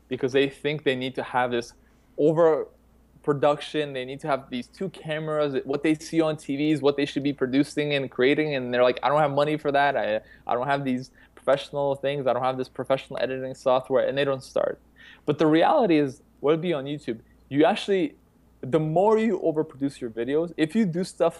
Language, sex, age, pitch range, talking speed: English, male, 20-39, 130-160 Hz, 215 wpm